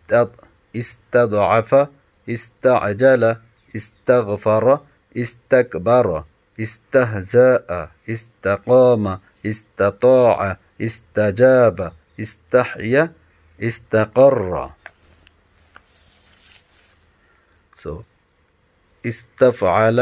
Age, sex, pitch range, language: 50-69, male, 85-120 Hz, Bengali